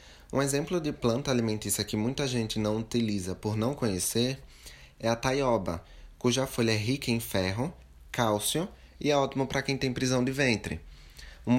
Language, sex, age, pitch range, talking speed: Amharic, male, 20-39, 100-125 Hz, 170 wpm